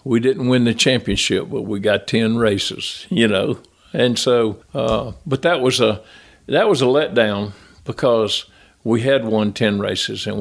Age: 50-69